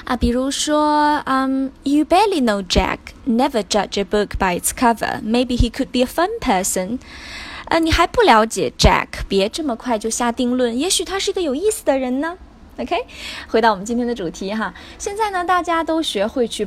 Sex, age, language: female, 10-29, Chinese